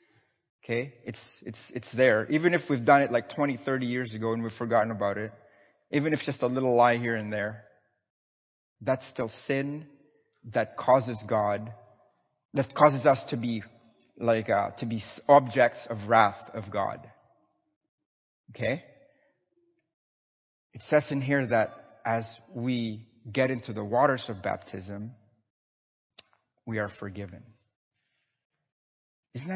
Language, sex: English, male